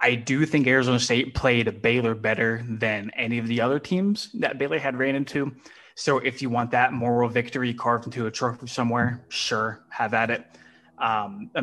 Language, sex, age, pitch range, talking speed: English, male, 20-39, 115-140 Hz, 185 wpm